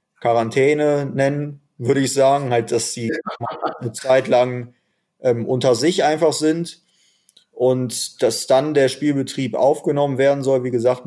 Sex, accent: male, German